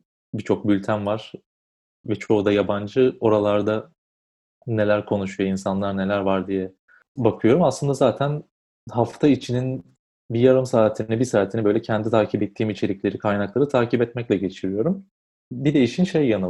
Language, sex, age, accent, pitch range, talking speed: Turkish, male, 30-49, native, 100-120 Hz, 140 wpm